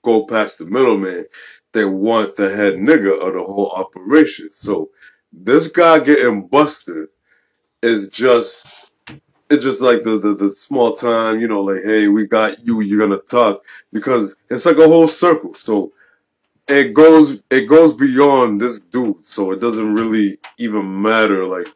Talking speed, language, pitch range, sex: 165 wpm, English, 105-140 Hz, male